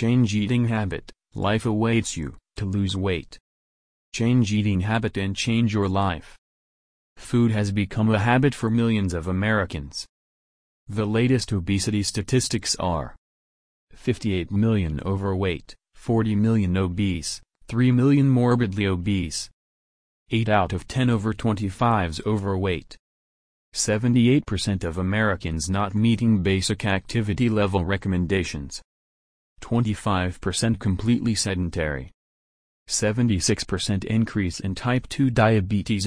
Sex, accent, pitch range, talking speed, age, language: male, American, 90-110 Hz, 110 wpm, 30-49, English